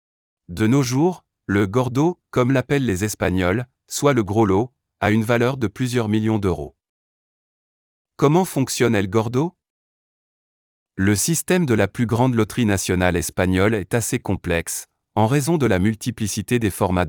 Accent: French